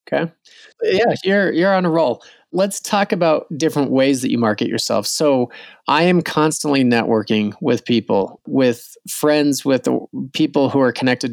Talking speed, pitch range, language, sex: 160 wpm, 120-155 Hz, English, male